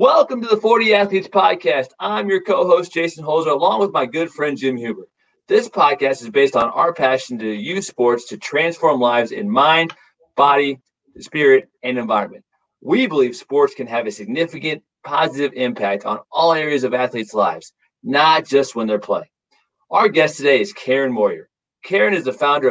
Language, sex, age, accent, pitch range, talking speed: English, male, 40-59, American, 125-200 Hz, 175 wpm